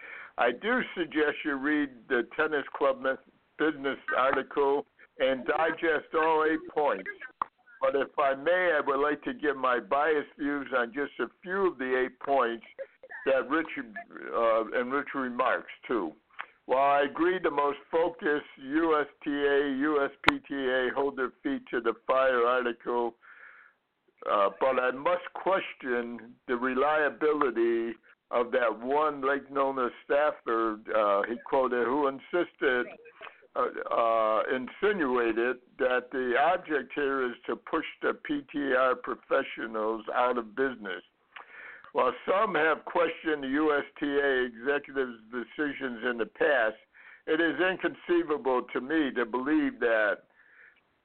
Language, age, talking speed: English, 60-79, 130 wpm